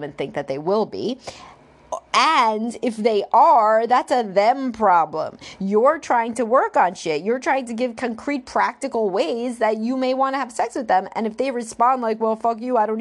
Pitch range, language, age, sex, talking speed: 200-260 Hz, English, 30-49, female, 210 wpm